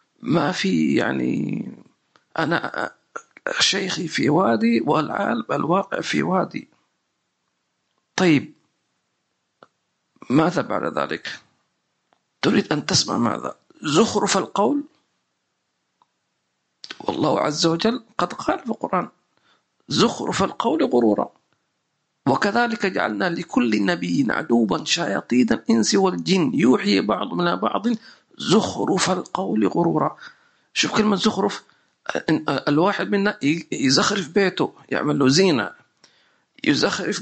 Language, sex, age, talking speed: English, male, 50-69, 90 wpm